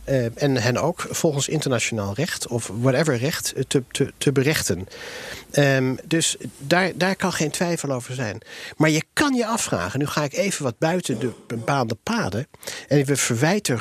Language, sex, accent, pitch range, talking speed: Dutch, male, Dutch, 120-165 Hz, 175 wpm